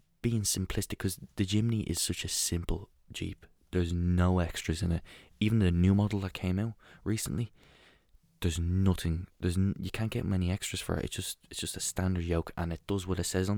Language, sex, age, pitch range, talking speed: English, male, 20-39, 85-100 Hz, 210 wpm